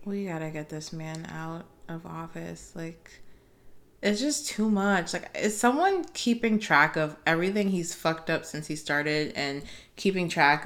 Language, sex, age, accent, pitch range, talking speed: English, female, 20-39, American, 145-175 Hz, 165 wpm